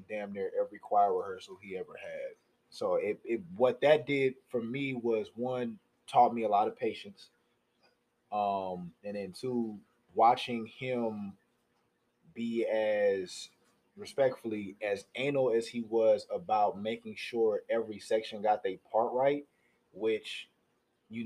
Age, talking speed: 20-39, 140 wpm